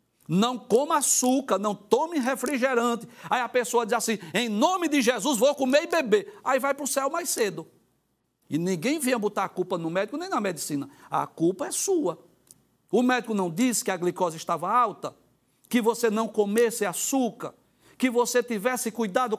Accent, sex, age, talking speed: Brazilian, male, 60-79, 185 wpm